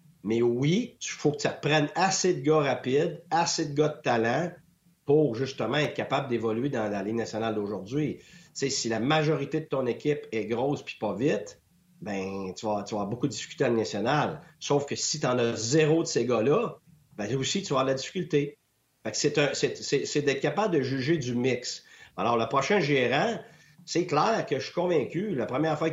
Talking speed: 215 wpm